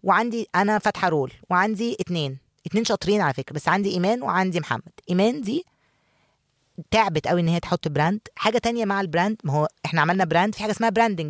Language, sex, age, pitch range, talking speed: Arabic, female, 20-39, 160-205 Hz, 190 wpm